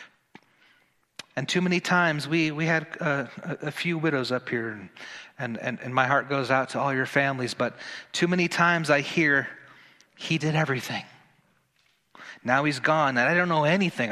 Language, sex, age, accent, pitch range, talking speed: English, male, 30-49, American, 140-180 Hz, 175 wpm